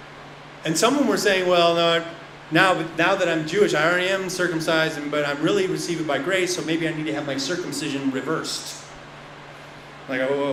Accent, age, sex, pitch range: American, 30-49, male, 150-210 Hz